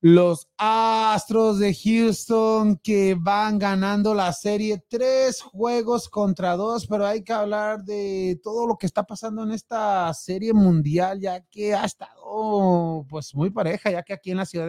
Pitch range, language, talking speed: 155-200 Hz, Spanish, 170 wpm